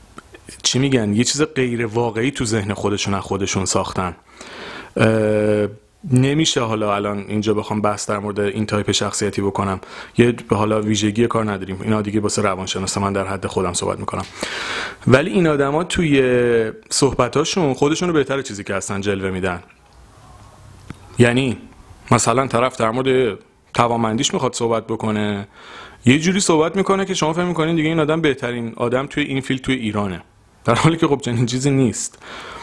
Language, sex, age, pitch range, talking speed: Persian, male, 30-49, 105-145 Hz, 160 wpm